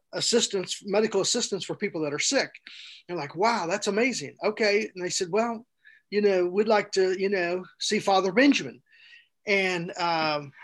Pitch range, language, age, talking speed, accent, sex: 175-220 Hz, English, 40-59, 170 wpm, American, male